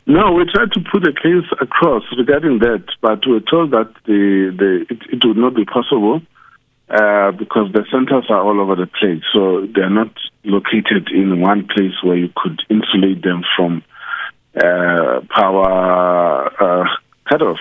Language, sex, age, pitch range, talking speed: English, male, 50-69, 95-125 Hz, 165 wpm